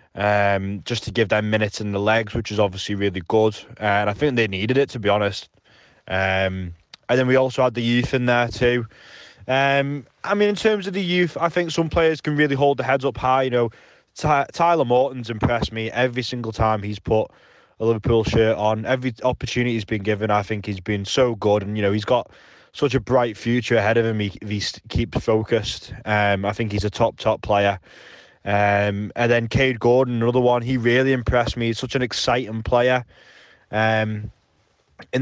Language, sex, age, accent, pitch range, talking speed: English, male, 20-39, British, 105-130 Hz, 205 wpm